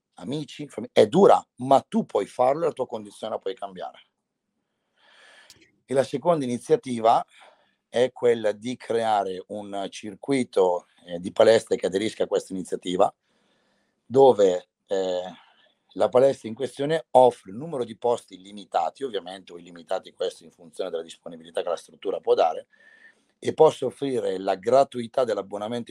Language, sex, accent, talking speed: Italian, male, native, 150 wpm